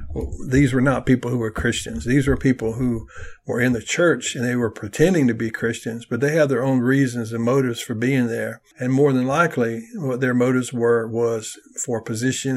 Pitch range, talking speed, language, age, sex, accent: 115-130 Hz, 210 wpm, English, 60-79, male, American